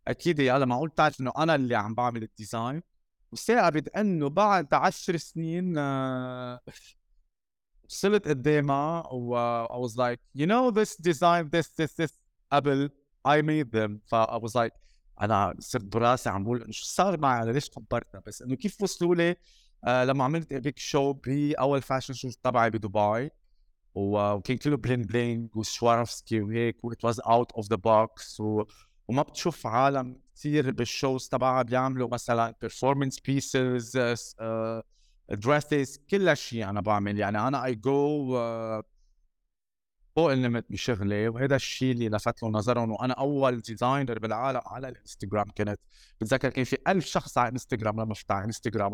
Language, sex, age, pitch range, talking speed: English, male, 20-39, 115-150 Hz, 120 wpm